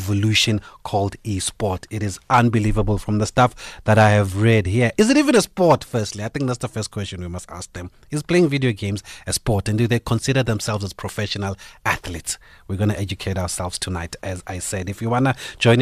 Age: 30-49